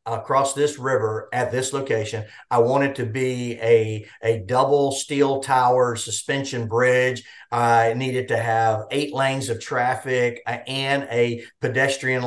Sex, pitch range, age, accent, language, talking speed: male, 115-135 Hz, 50-69, American, English, 145 wpm